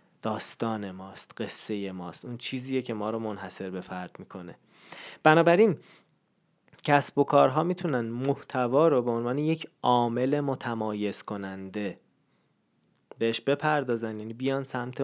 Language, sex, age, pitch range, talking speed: Persian, male, 20-39, 110-145 Hz, 120 wpm